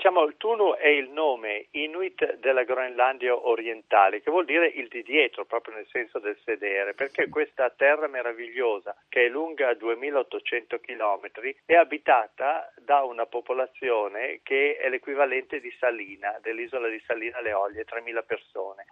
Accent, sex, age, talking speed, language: native, male, 50-69, 145 wpm, Italian